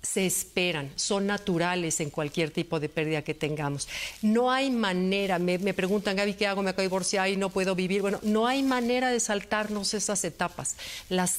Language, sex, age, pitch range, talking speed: Spanish, female, 50-69, 175-210 Hz, 195 wpm